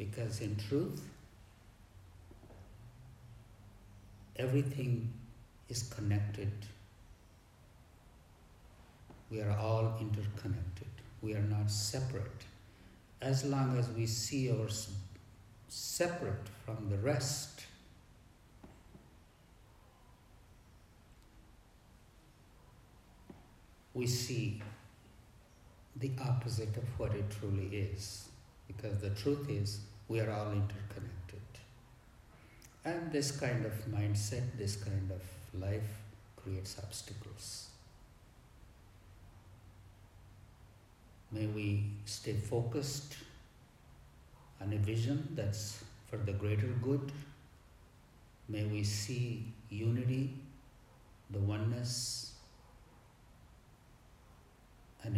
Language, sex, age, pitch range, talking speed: English, male, 60-79, 100-120 Hz, 75 wpm